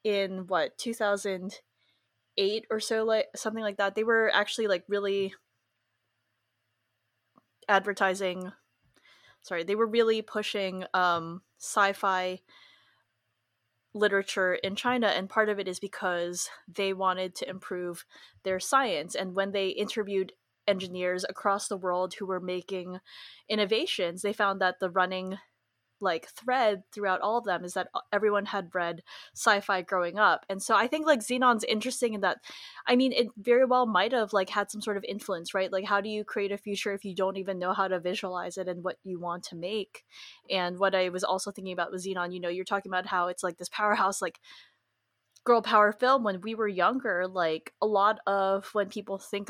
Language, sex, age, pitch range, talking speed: English, female, 20-39, 185-210 Hz, 175 wpm